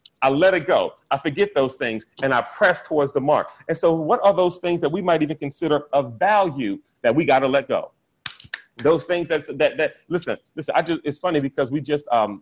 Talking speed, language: 220 wpm, English